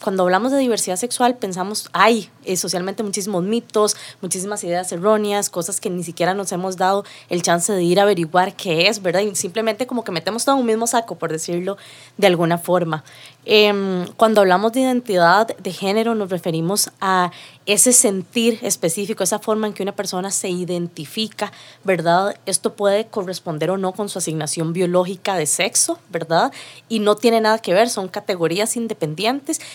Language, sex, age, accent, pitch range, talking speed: Spanish, female, 20-39, Colombian, 175-225 Hz, 175 wpm